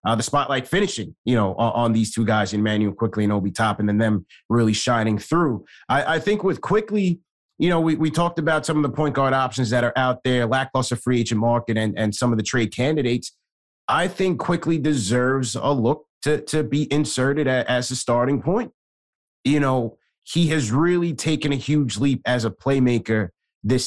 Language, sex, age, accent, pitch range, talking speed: English, male, 30-49, American, 115-145 Hz, 205 wpm